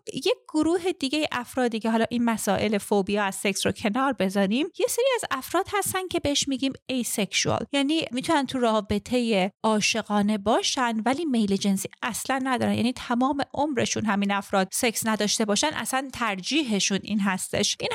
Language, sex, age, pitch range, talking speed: Persian, female, 30-49, 215-280 Hz, 160 wpm